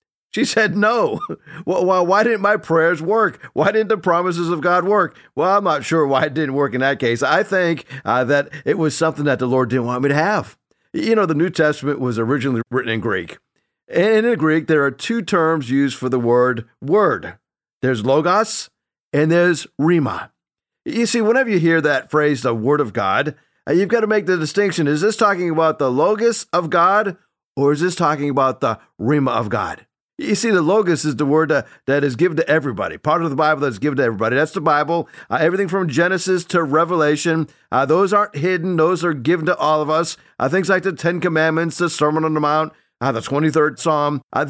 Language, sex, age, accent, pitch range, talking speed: English, male, 50-69, American, 145-185 Hz, 215 wpm